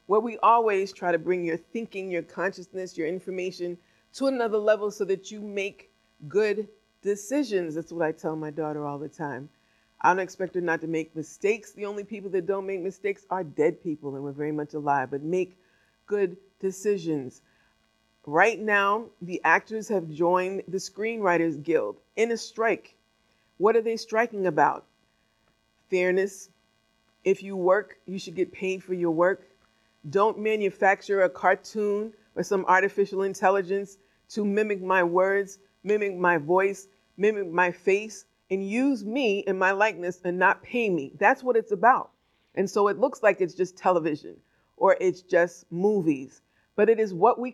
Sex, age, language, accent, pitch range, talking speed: female, 50-69, English, American, 175-210 Hz, 170 wpm